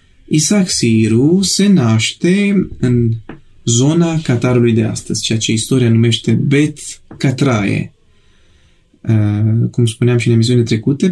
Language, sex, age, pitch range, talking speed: Romanian, male, 20-39, 110-135 Hz, 115 wpm